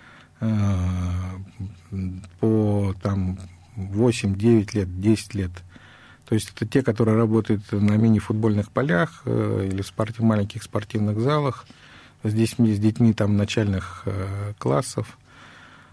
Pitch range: 95-115 Hz